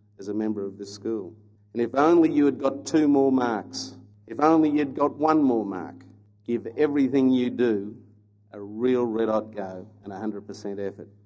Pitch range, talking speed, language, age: 105-130 Hz, 180 wpm, English, 50-69